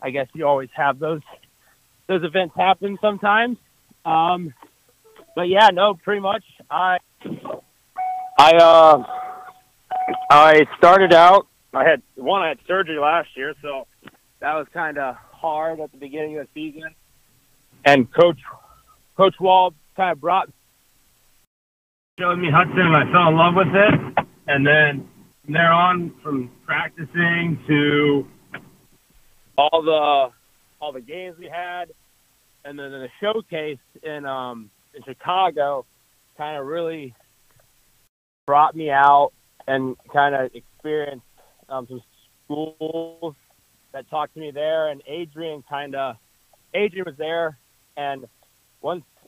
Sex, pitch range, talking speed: male, 135-170 Hz, 130 wpm